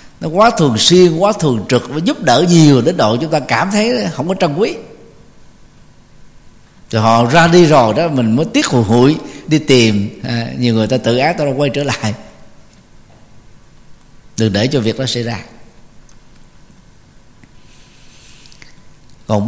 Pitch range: 120-160 Hz